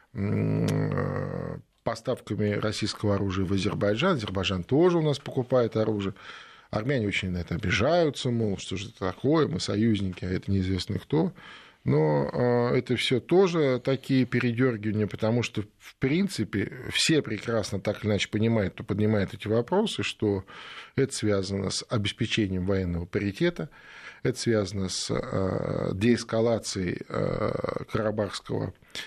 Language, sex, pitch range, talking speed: Russian, male, 100-120 Hz, 120 wpm